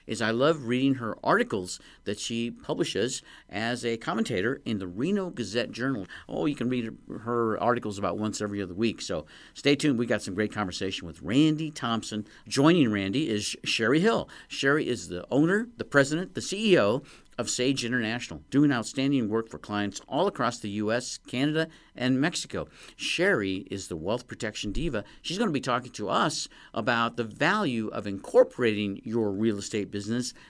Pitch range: 110-145 Hz